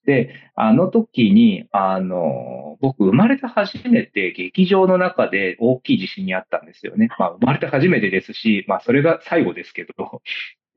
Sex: male